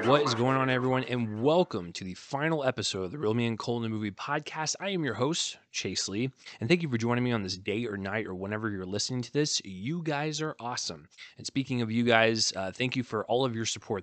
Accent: American